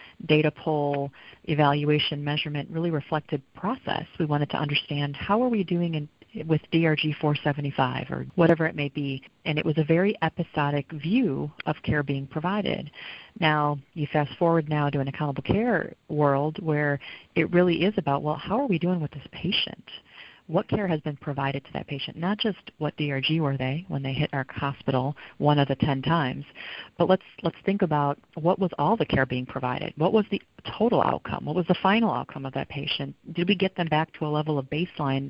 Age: 40-59